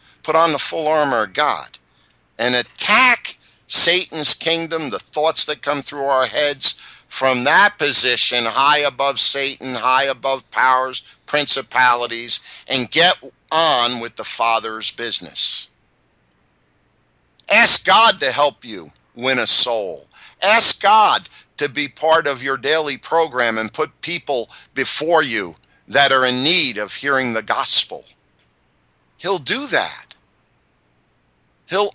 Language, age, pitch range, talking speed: English, 50-69, 120-160 Hz, 130 wpm